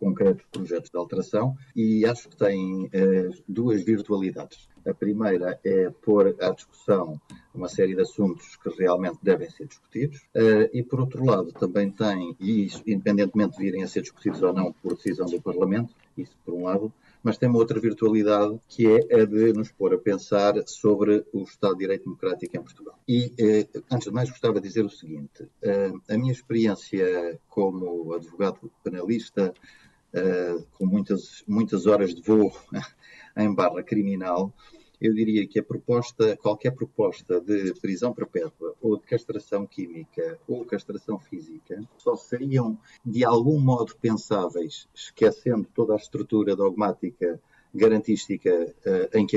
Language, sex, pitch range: Portuguese, male, 100-120 Hz